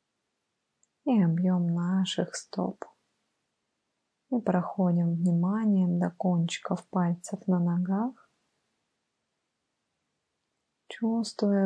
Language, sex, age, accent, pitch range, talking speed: Russian, female, 20-39, native, 180-205 Hz, 65 wpm